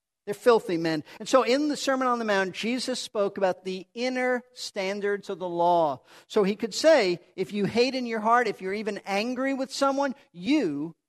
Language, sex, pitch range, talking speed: English, male, 190-240 Hz, 200 wpm